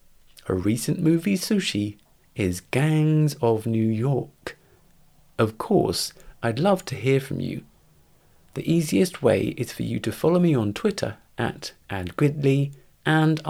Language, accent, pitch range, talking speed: English, British, 100-160 Hz, 140 wpm